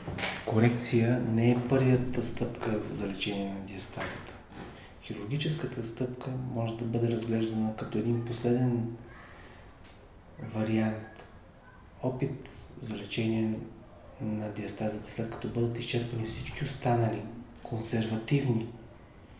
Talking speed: 95 wpm